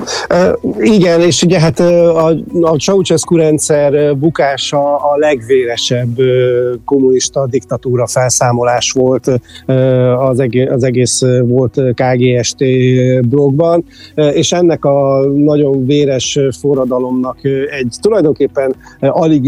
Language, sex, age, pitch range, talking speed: Hungarian, male, 50-69, 125-140 Hz, 95 wpm